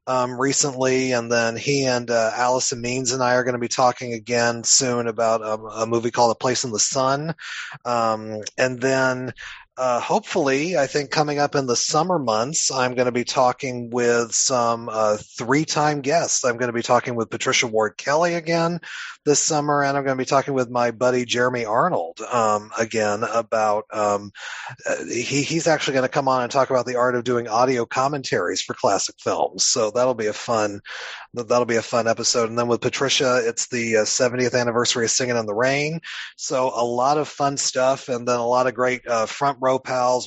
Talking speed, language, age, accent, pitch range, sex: 205 wpm, English, 30-49, American, 115-140 Hz, male